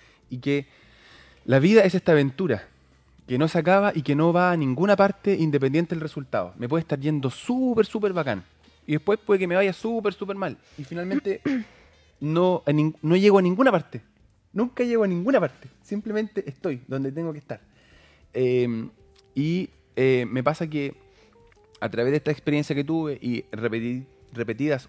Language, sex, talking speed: Spanish, male, 170 wpm